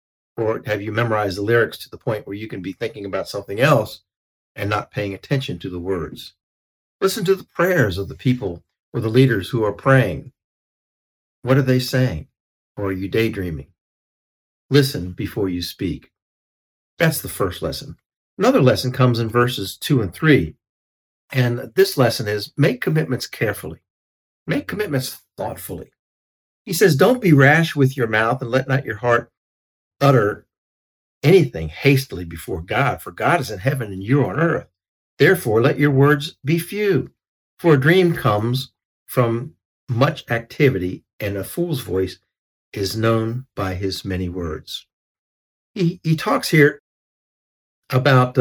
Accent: American